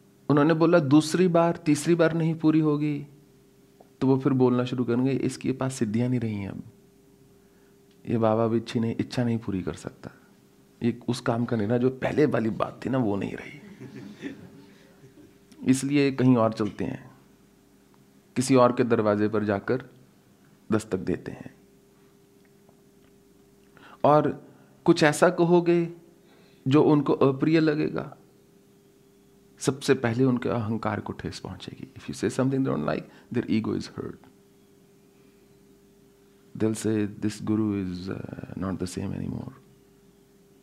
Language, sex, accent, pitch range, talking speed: English, male, Indian, 105-135 Hz, 125 wpm